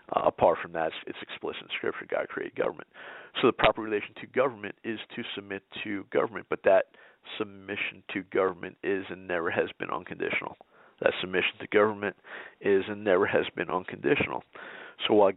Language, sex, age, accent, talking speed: English, male, 50-69, American, 175 wpm